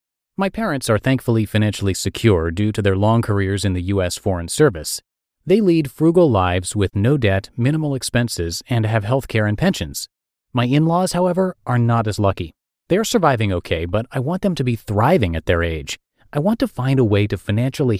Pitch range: 100-135 Hz